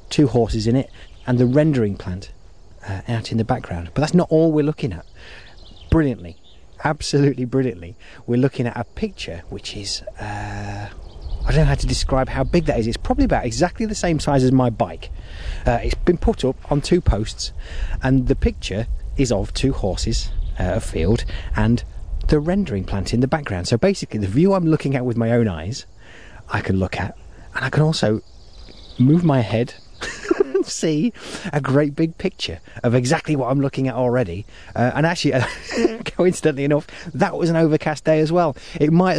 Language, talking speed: English, 190 wpm